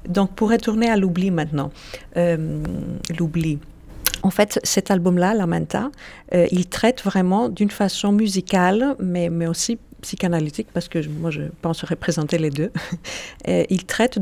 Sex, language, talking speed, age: female, French, 150 wpm, 50-69